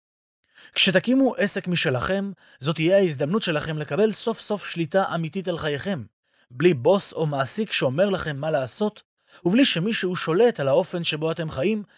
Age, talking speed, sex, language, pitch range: 30-49, 150 wpm, male, Hebrew, 150-200 Hz